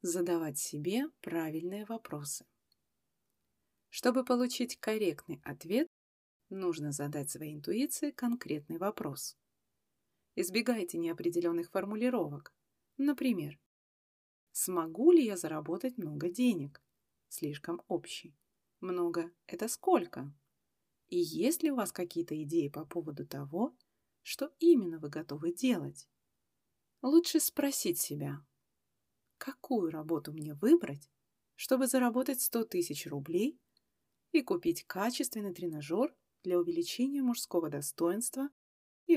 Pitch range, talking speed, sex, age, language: 165-255 Hz, 100 wpm, female, 30-49, Russian